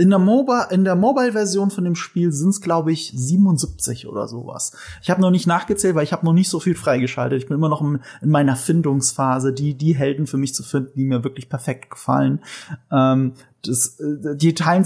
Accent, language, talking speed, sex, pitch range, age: German, German, 210 wpm, male, 135-170 Hz, 30-49